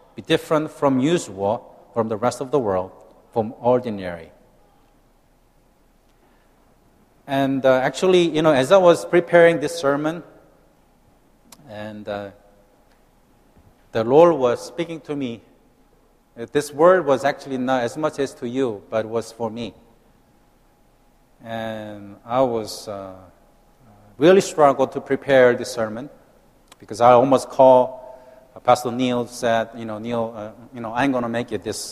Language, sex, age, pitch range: Korean, male, 50-69, 110-140 Hz